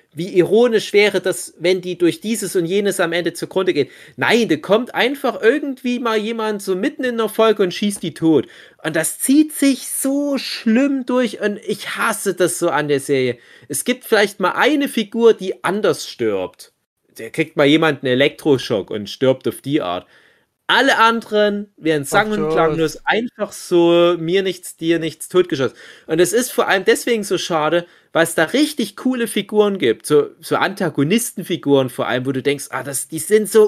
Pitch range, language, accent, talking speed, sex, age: 150-215 Hz, German, German, 185 wpm, male, 30-49